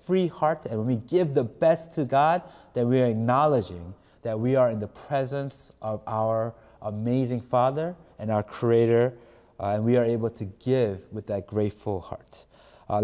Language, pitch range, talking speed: English, 115-155 Hz, 180 wpm